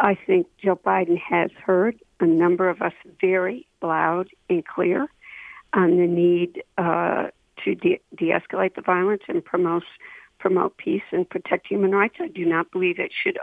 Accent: American